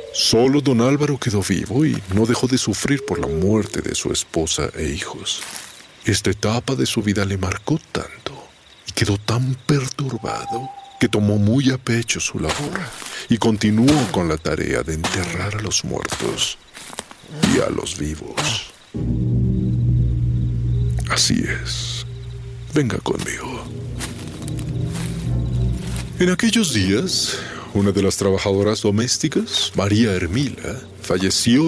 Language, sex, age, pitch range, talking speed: Spanish, male, 50-69, 95-125 Hz, 125 wpm